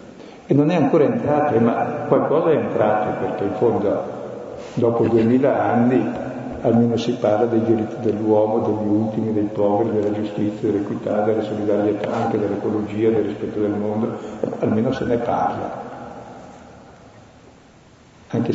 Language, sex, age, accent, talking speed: Italian, male, 60-79, native, 135 wpm